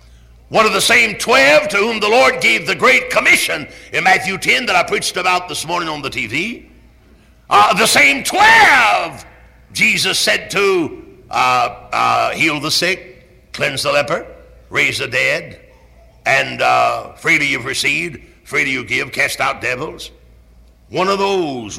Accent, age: American, 60-79